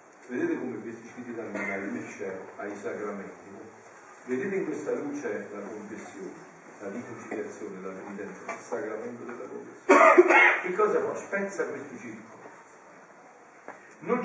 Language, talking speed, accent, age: Italian, 125 wpm, native, 50-69